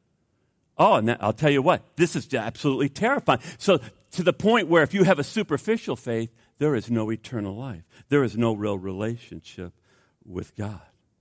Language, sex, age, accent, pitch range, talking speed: English, male, 50-69, American, 120-175 Hz, 175 wpm